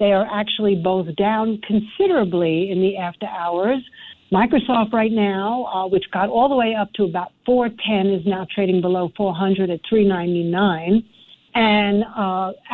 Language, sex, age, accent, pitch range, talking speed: English, female, 60-79, American, 185-230 Hz, 150 wpm